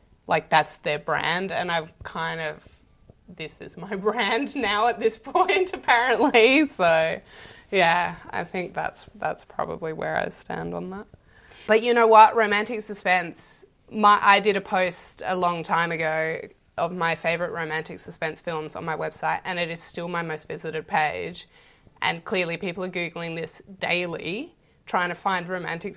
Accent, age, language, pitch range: Australian, 20-39, English, 170-200 Hz